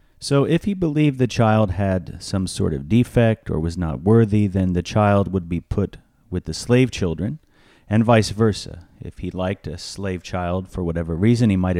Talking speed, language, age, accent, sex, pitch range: 200 wpm, English, 30-49, American, male, 90-110 Hz